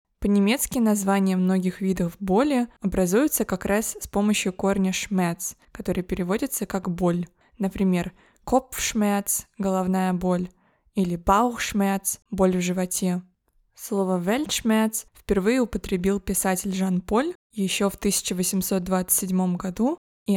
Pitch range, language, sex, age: 185-210 Hz, Russian, female, 20-39